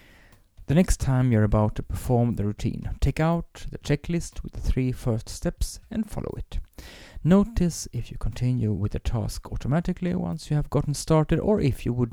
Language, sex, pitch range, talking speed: English, male, 105-140 Hz, 190 wpm